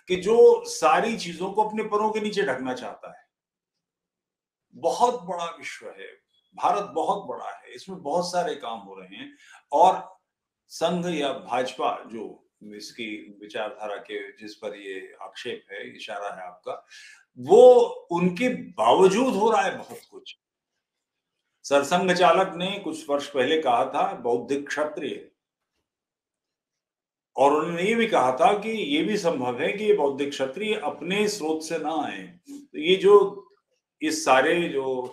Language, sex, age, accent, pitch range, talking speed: English, male, 50-69, Indian, 155-245 Hz, 140 wpm